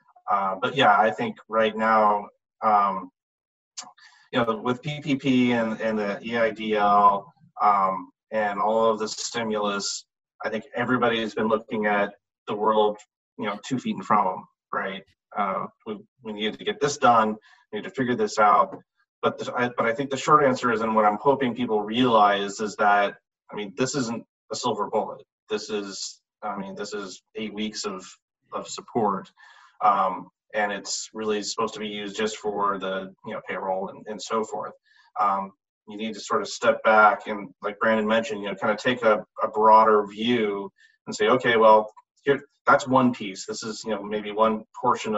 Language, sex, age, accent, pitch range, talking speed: English, male, 30-49, American, 105-120 Hz, 190 wpm